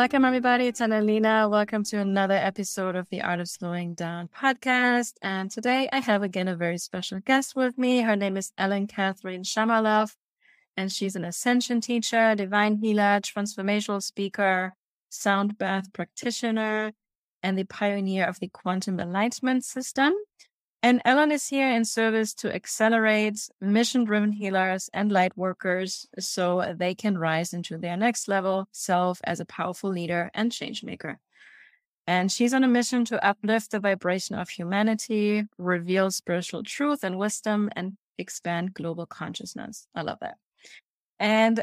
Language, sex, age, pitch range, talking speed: English, female, 30-49, 185-225 Hz, 150 wpm